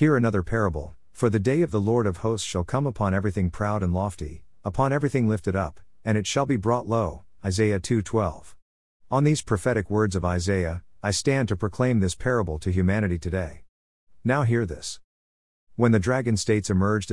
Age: 50-69